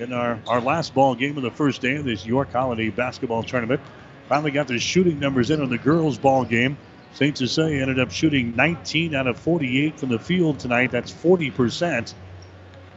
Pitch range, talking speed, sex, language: 125-150 Hz, 195 wpm, male, English